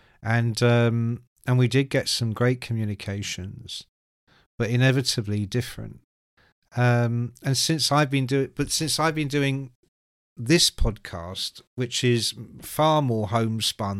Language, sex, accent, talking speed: English, male, British, 130 wpm